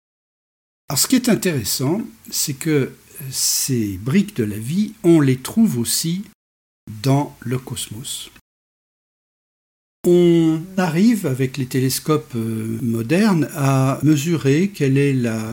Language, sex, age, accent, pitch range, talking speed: French, male, 60-79, French, 120-160 Hz, 115 wpm